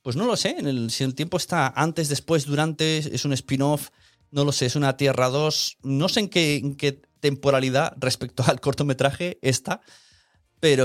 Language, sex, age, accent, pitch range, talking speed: Spanish, male, 30-49, Spanish, 115-145 Hz, 195 wpm